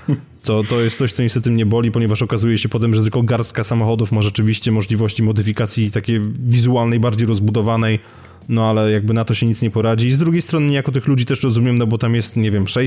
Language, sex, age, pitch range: Polish, male, 20-39, 105-120 Hz